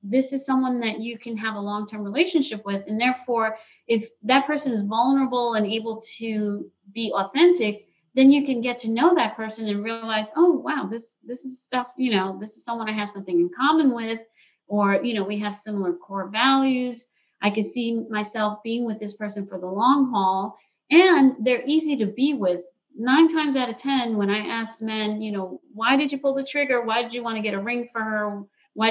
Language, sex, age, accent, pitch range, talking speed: English, female, 40-59, American, 215-275 Hz, 215 wpm